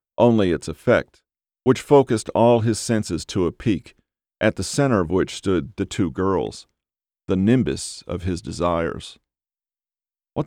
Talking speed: 150 wpm